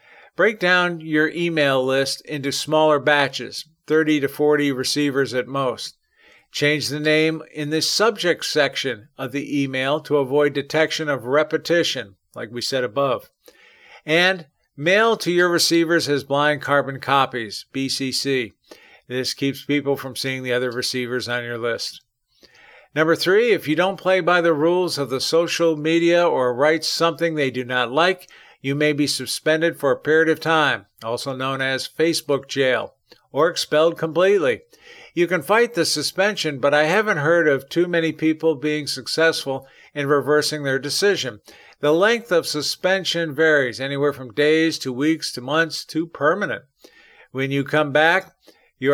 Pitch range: 135-170 Hz